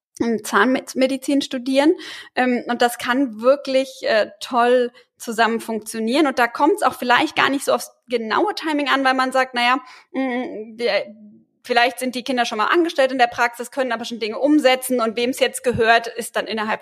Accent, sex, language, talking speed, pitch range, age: German, female, German, 175 wpm, 235-280 Hz, 20-39